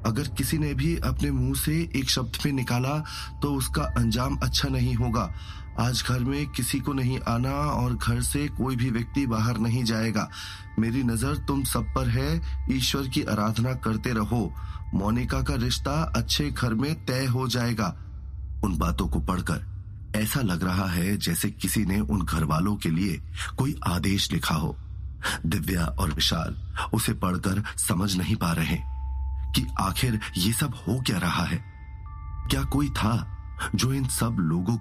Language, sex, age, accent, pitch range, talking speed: Hindi, male, 30-49, native, 90-120 Hz, 165 wpm